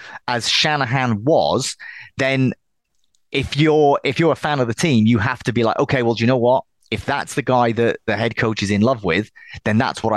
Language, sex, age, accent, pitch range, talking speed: English, male, 30-49, British, 110-140 Hz, 230 wpm